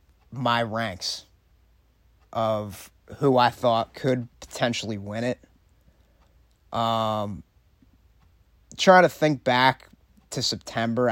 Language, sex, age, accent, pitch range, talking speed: English, male, 30-49, American, 105-130 Hz, 90 wpm